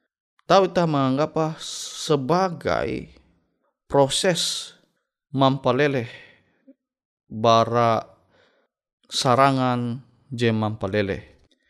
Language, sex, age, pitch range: Indonesian, male, 20-39, 110-150 Hz